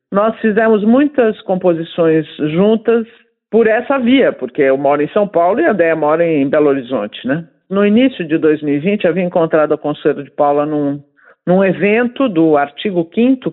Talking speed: 175 wpm